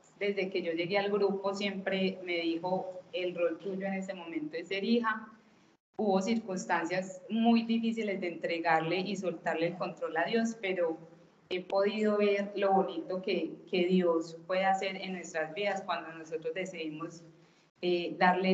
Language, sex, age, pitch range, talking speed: Spanish, female, 20-39, 165-195 Hz, 160 wpm